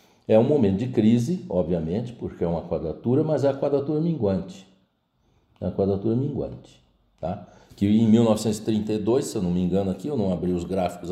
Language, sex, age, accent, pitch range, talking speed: Portuguese, male, 60-79, Brazilian, 95-140 Hz, 185 wpm